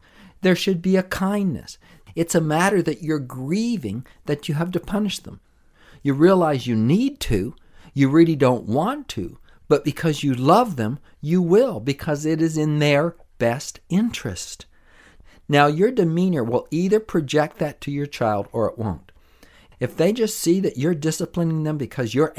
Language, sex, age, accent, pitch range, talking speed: English, male, 50-69, American, 110-160 Hz, 170 wpm